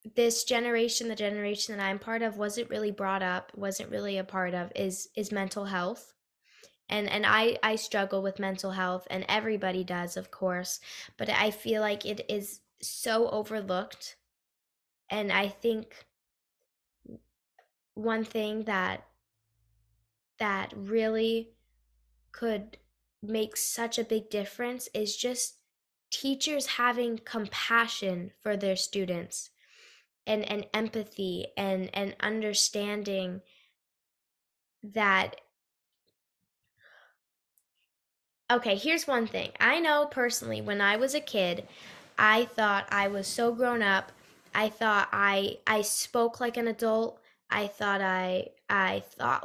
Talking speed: 125 wpm